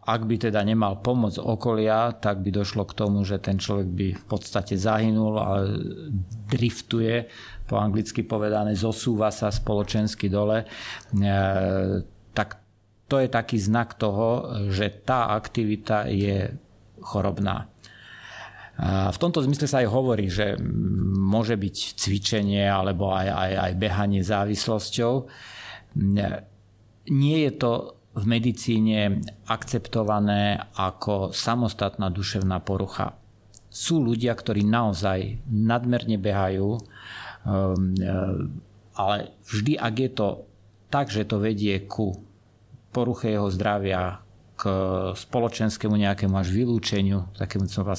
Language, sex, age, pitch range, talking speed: Slovak, male, 50-69, 100-115 Hz, 120 wpm